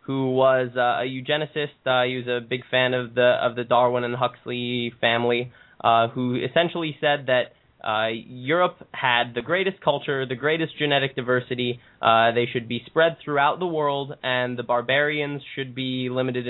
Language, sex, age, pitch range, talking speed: English, male, 20-39, 120-135 Hz, 175 wpm